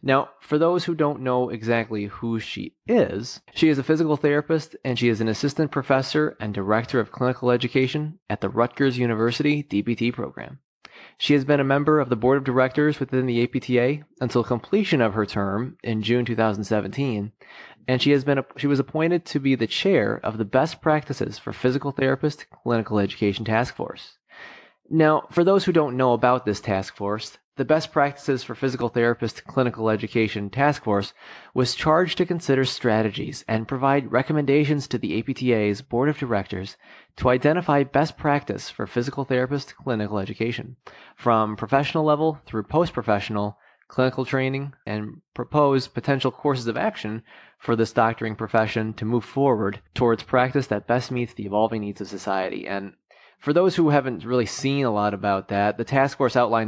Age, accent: 30-49, American